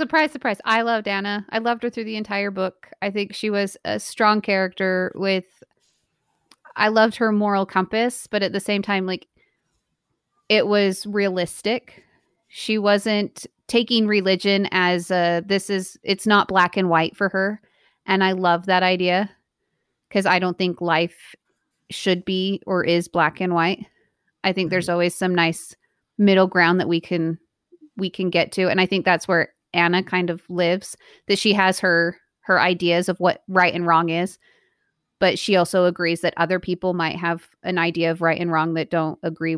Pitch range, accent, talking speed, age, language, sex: 175-200 Hz, American, 180 wpm, 30-49, English, female